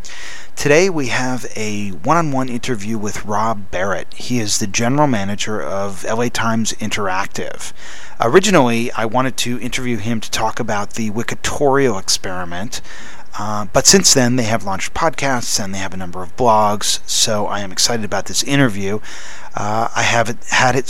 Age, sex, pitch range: 40-59, male, 105-125 Hz